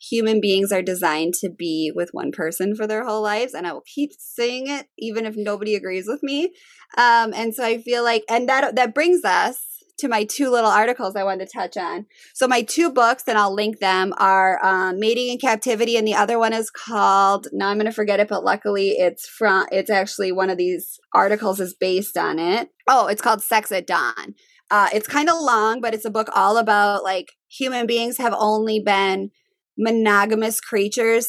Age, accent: 20-39, American